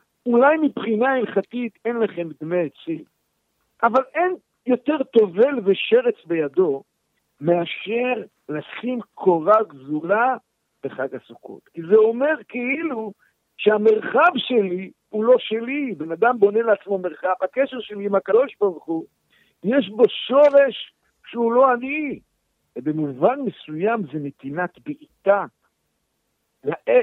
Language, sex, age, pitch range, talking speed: Hebrew, male, 60-79, 155-245 Hz, 110 wpm